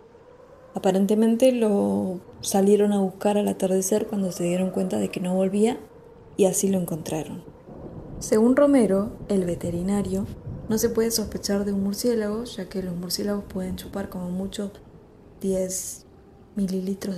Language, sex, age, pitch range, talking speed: Spanish, female, 20-39, 185-225 Hz, 140 wpm